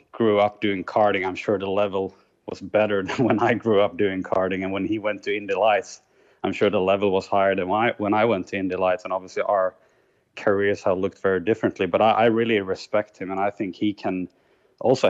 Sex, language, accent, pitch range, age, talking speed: male, English, Norwegian, 95-105 Hz, 20-39, 235 wpm